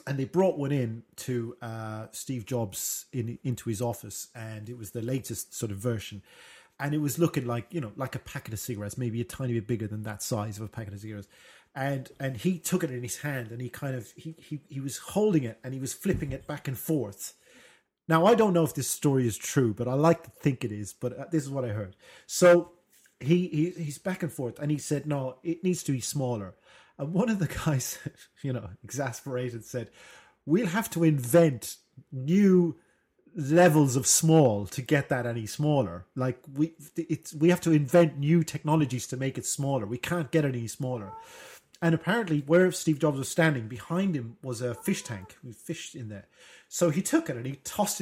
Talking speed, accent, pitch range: 215 wpm, British, 120-165 Hz